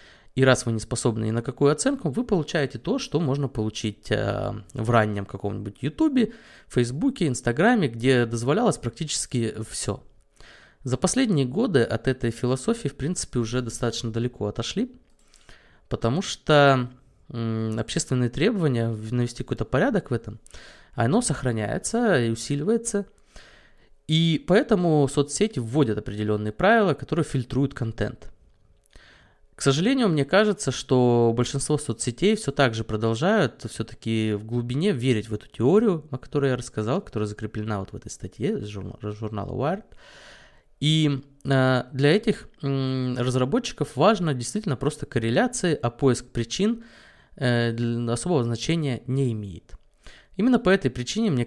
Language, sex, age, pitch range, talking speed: Russian, male, 20-39, 115-155 Hz, 125 wpm